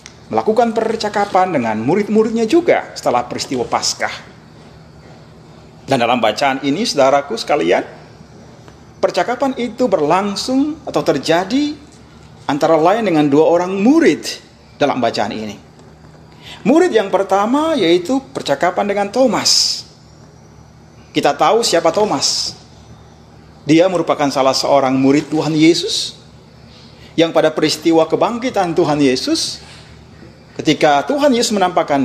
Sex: male